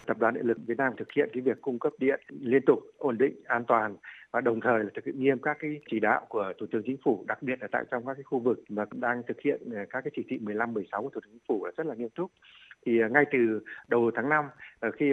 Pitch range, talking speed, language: 110-150 Hz, 280 wpm, Vietnamese